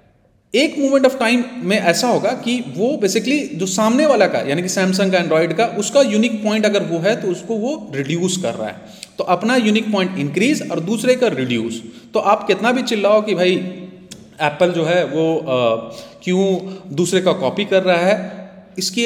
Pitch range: 160-215 Hz